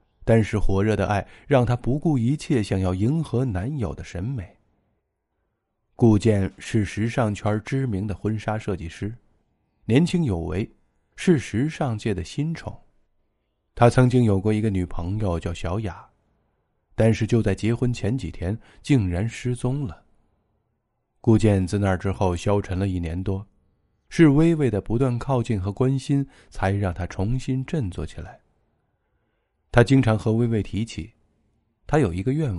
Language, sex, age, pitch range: Chinese, male, 20-39, 95-125 Hz